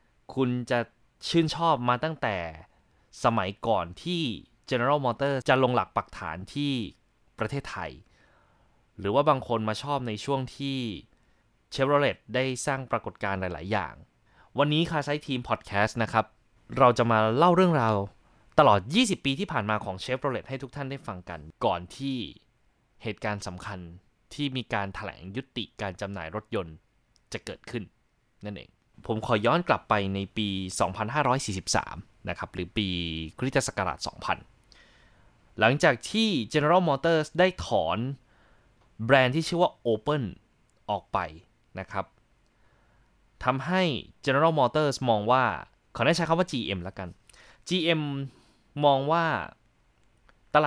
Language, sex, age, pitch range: Thai, male, 20-39, 100-140 Hz